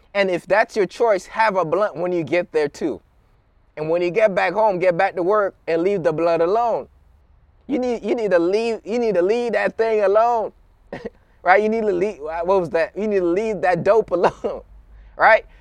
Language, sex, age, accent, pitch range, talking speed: English, male, 20-39, American, 155-220 Hz, 220 wpm